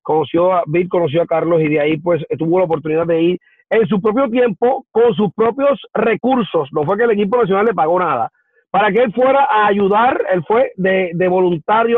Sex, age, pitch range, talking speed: male, 40-59, 205-255 Hz, 215 wpm